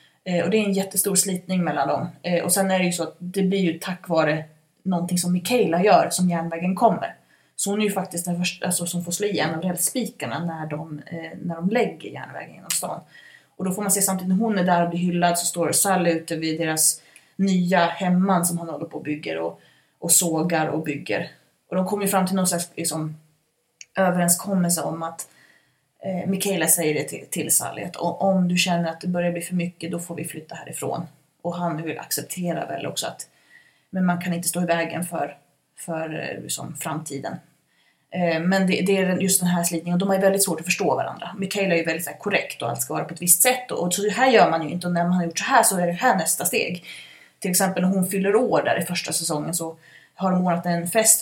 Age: 20-39